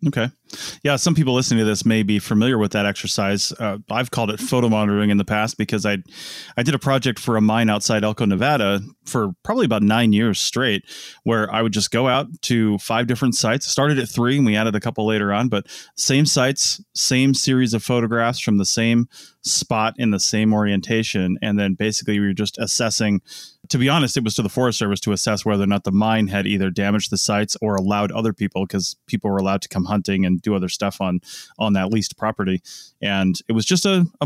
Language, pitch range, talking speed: English, 100-115 Hz, 225 wpm